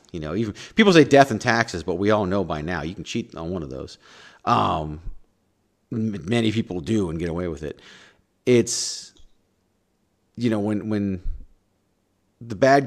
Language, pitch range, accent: English, 90-110 Hz, American